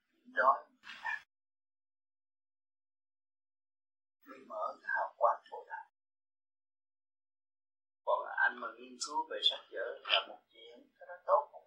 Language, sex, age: Vietnamese, male, 30-49